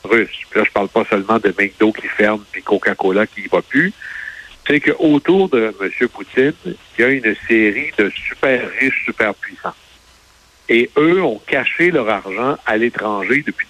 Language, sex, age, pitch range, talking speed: French, male, 60-79, 105-135 Hz, 170 wpm